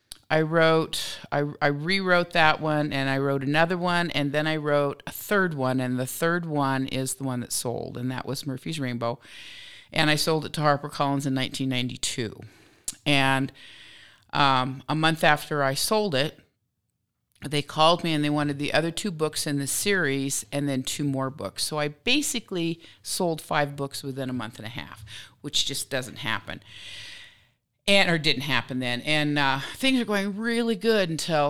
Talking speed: 185 wpm